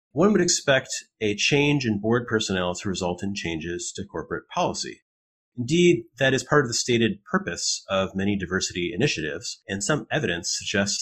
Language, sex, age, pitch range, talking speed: English, male, 30-49, 90-120 Hz, 170 wpm